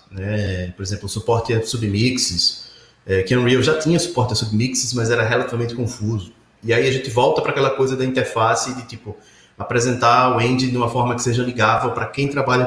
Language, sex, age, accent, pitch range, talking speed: Portuguese, male, 30-49, Brazilian, 105-130 Hz, 210 wpm